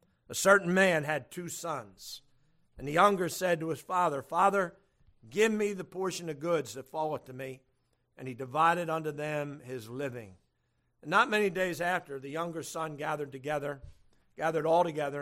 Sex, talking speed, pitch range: male, 175 wpm, 135-175 Hz